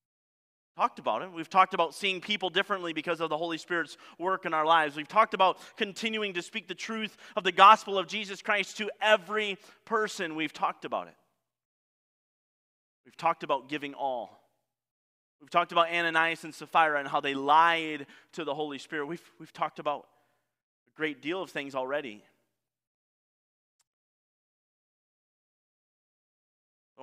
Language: English